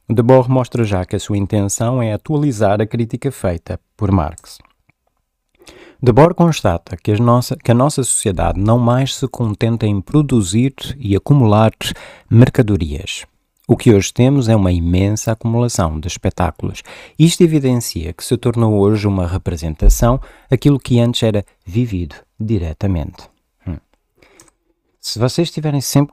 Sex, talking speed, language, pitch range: male, 140 wpm, Portuguese, 95-125 Hz